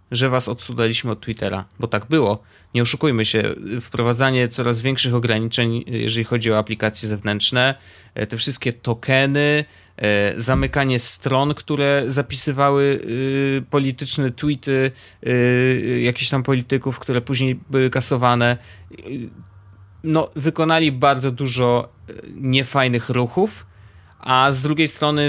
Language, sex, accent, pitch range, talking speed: Polish, male, native, 110-135 Hz, 105 wpm